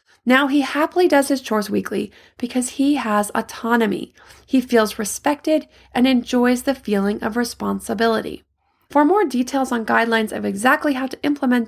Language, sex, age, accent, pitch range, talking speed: English, female, 30-49, American, 215-280 Hz, 155 wpm